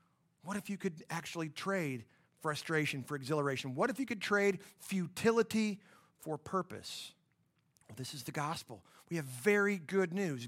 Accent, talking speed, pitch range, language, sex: American, 150 wpm, 150-195 Hz, English, male